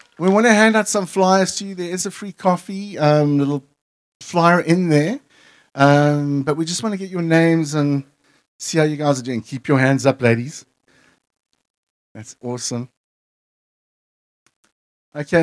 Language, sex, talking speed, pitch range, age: English, male, 170 wpm, 145-185 Hz, 50-69